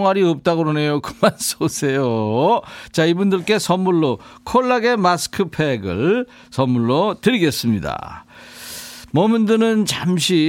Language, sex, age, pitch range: Korean, male, 50-69, 120-180 Hz